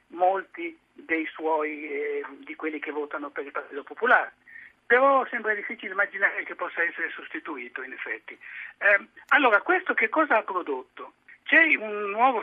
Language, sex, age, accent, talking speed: Italian, male, 60-79, native, 155 wpm